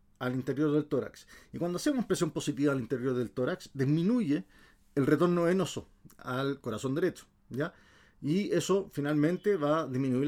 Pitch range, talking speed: 125-160 Hz, 160 wpm